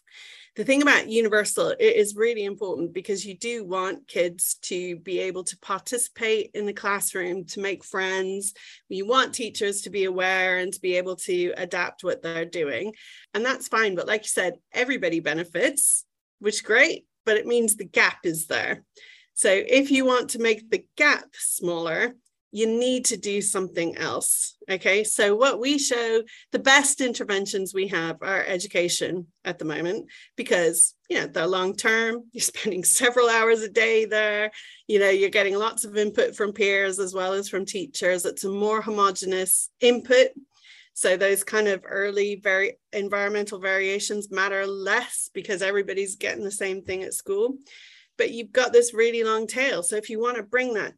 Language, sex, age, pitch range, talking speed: English, female, 30-49, 190-245 Hz, 180 wpm